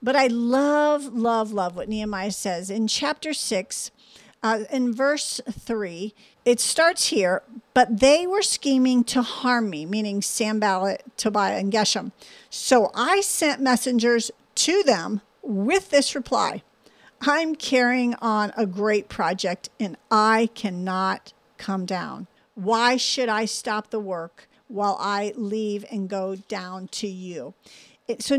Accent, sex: American, female